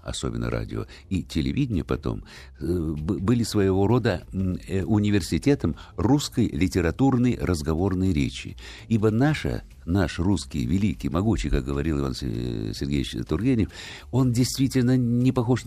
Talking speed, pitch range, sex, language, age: 105 wpm, 75-110 Hz, male, Russian, 60-79